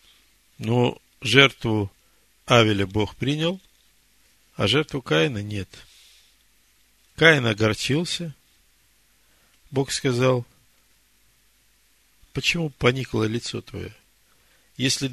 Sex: male